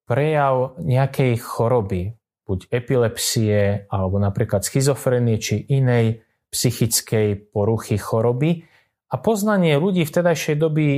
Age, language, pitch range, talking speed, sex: 30-49, Slovak, 110-145 Hz, 105 wpm, male